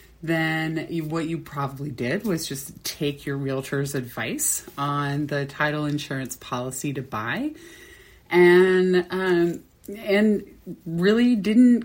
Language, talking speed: English, 115 wpm